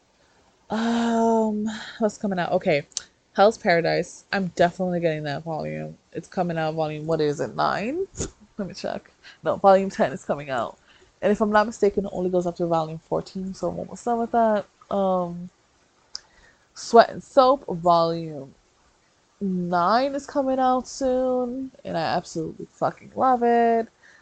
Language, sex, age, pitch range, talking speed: English, female, 20-39, 165-220 Hz, 155 wpm